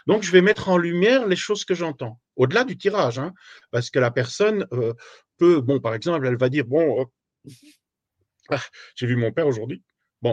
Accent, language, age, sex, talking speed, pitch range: French, French, 50-69, male, 205 wpm, 125-180 Hz